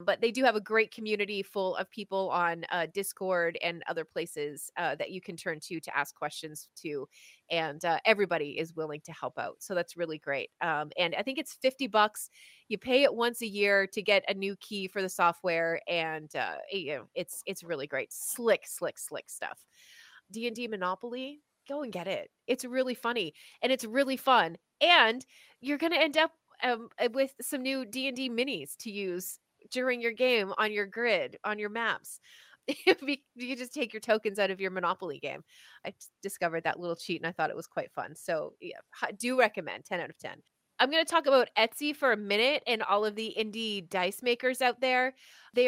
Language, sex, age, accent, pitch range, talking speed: English, female, 30-49, American, 180-255 Hz, 205 wpm